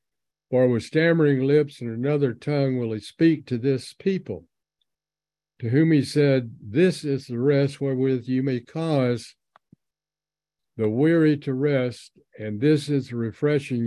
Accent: American